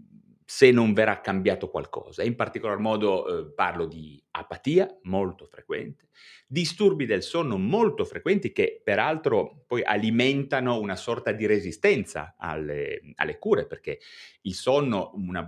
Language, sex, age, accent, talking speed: Italian, male, 30-49, native, 130 wpm